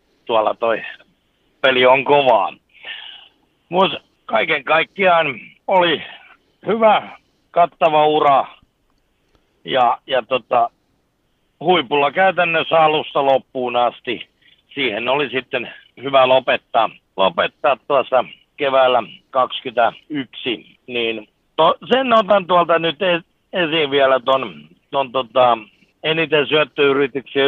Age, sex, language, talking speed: 60-79, male, Finnish, 90 wpm